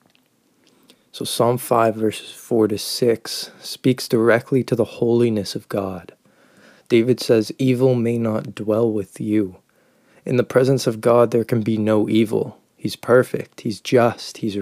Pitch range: 105-120 Hz